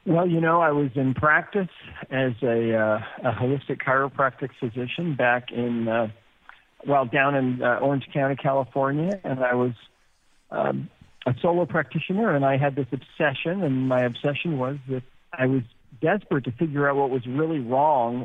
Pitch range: 130-155 Hz